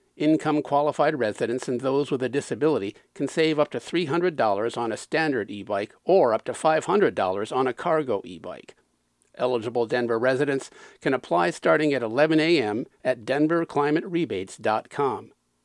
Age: 50-69